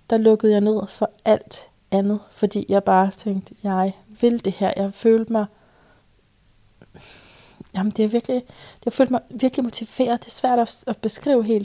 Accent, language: native, Danish